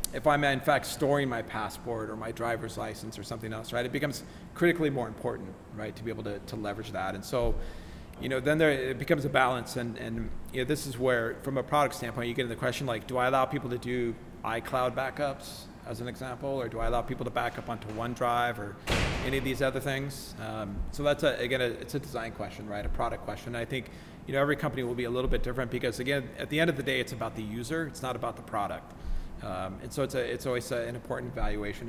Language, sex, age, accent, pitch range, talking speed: English, male, 40-59, American, 115-135 Hz, 255 wpm